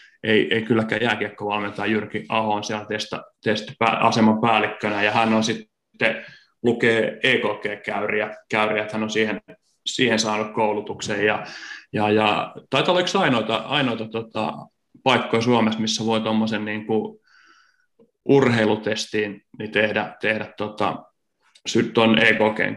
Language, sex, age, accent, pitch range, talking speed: Finnish, male, 30-49, native, 105-115 Hz, 115 wpm